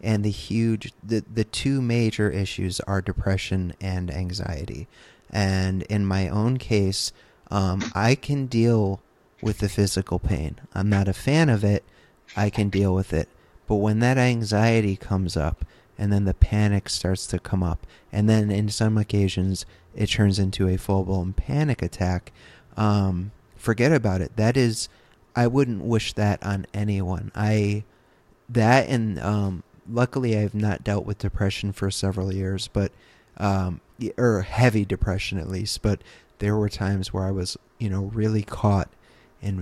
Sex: male